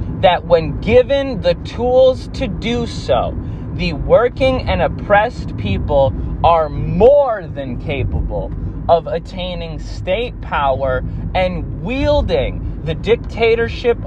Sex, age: male, 20-39